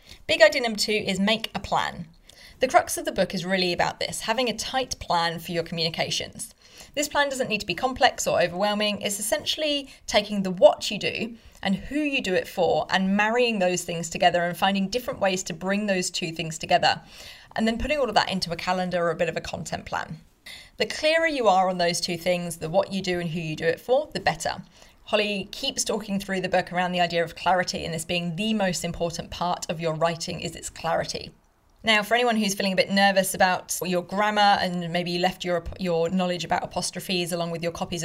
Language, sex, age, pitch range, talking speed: English, female, 30-49, 175-210 Hz, 230 wpm